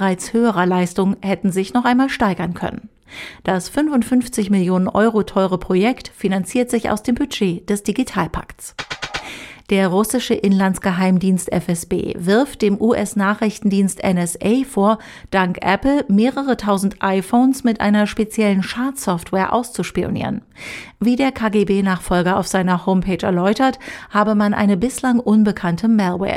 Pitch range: 190-235 Hz